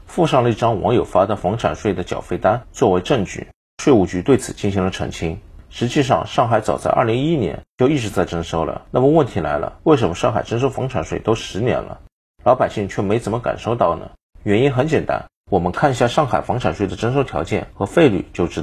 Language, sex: Chinese, male